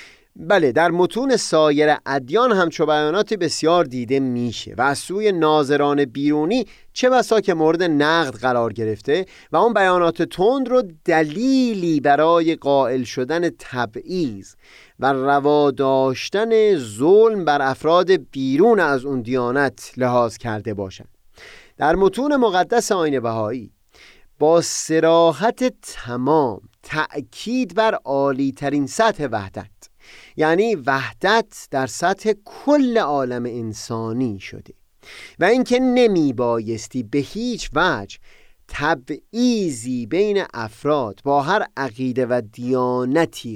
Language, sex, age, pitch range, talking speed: Persian, male, 30-49, 125-205 Hz, 110 wpm